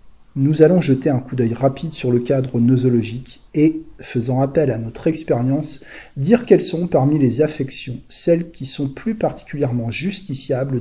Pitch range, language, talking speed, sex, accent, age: 120-155 Hz, French, 160 wpm, male, French, 40-59